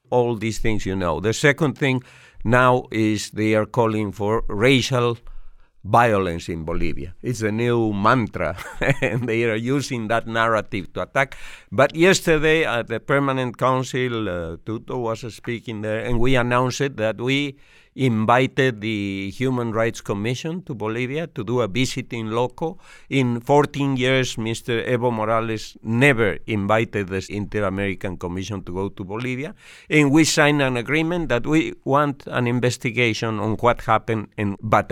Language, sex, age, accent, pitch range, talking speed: English, male, 50-69, Spanish, 105-125 Hz, 155 wpm